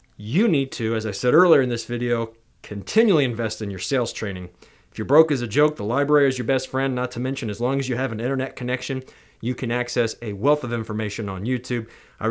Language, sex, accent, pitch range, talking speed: English, male, American, 110-130 Hz, 240 wpm